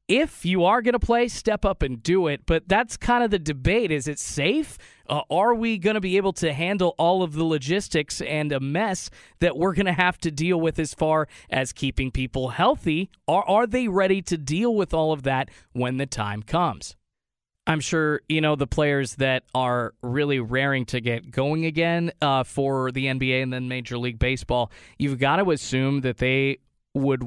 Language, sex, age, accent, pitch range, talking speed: English, male, 20-39, American, 130-170 Hz, 205 wpm